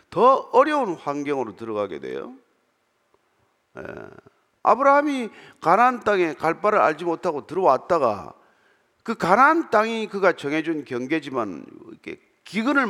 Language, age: Korean, 50-69